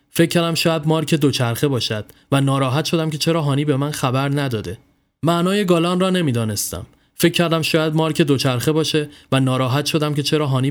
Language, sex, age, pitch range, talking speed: Persian, male, 20-39, 120-160 Hz, 180 wpm